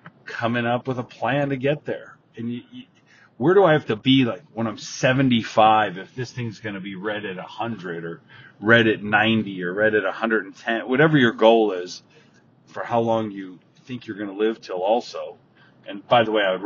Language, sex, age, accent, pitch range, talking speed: English, male, 40-59, American, 105-125 Hz, 215 wpm